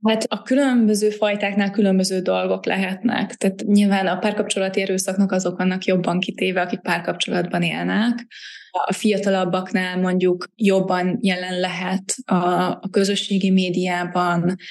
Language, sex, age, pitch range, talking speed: Hungarian, female, 20-39, 175-200 Hz, 115 wpm